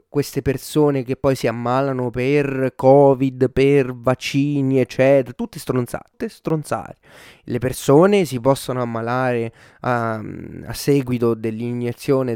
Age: 30-49